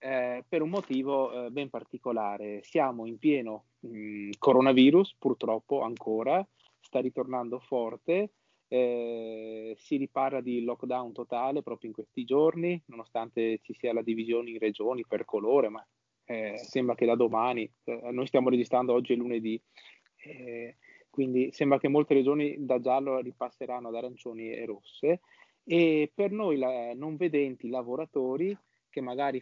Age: 30-49